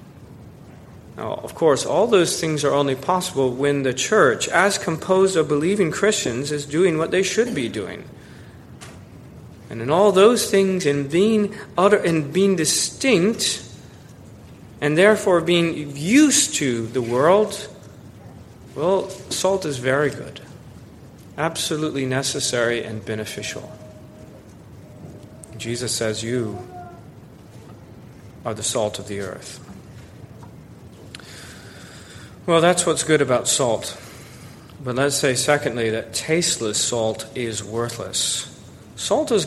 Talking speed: 115 wpm